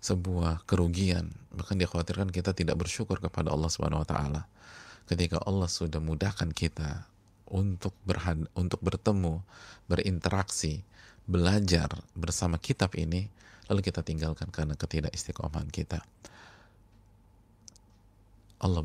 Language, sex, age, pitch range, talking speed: Indonesian, male, 30-49, 80-105 Hz, 105 wpm